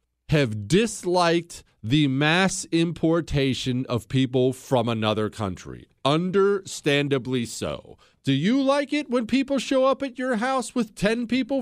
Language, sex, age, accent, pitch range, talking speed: English, male, 40-59, American, 135-230 Hz, 135 wpm